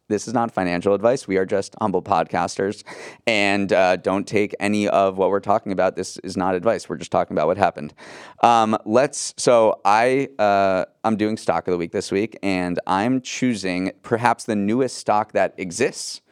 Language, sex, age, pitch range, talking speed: English, male, 30-49, 95-110 Hz, 190 wpm